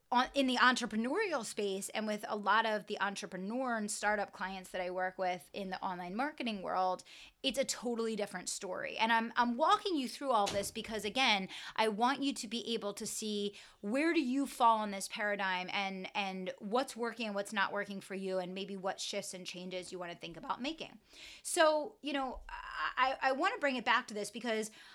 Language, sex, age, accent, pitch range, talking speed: English, female, 20-39, American, 200-255 Hz, 210 wpm